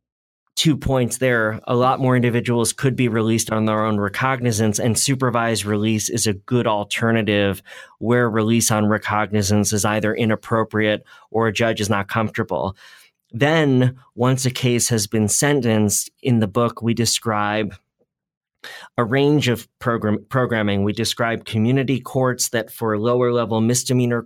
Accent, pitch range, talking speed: American, 110-125 Hz, 145 wpm